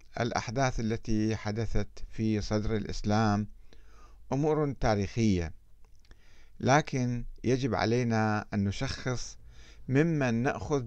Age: 50-69